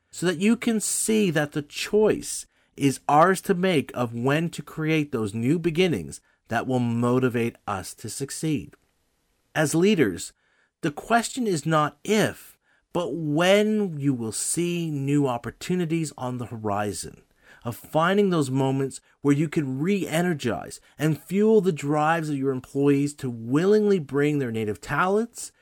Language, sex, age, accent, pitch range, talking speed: English, male, 40-59, American, 130-195 Hz, 150 wpm